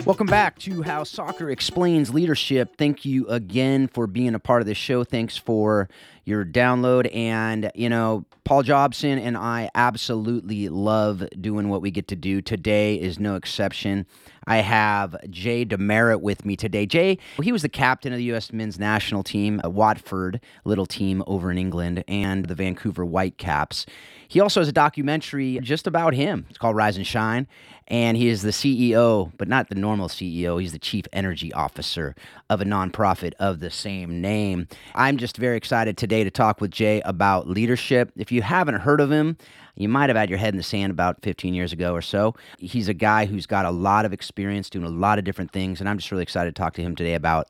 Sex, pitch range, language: male, 90-120 Hz, English